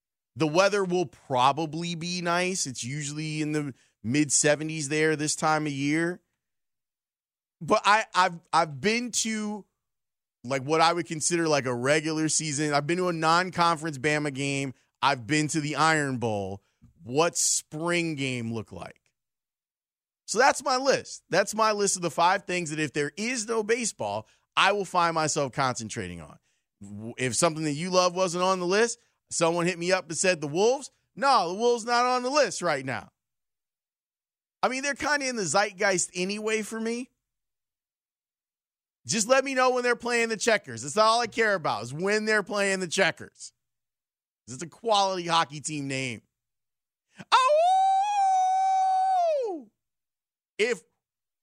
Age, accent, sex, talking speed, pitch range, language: 20-39, American, male, 160 wpm, 150-225 Hz, English